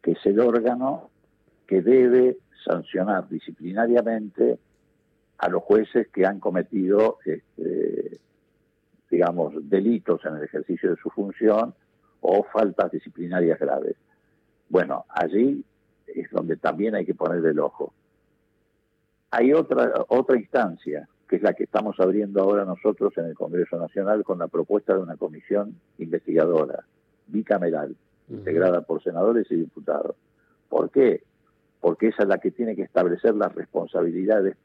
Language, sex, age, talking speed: Spanish, male, 50-69, 135 wpm